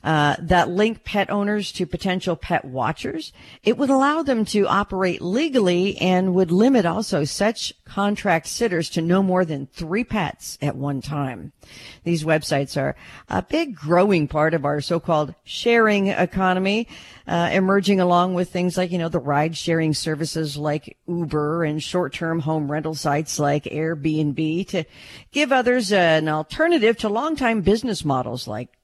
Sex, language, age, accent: female, English, 50-69, American